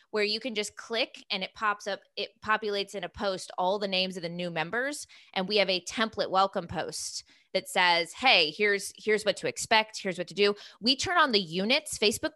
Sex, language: female, English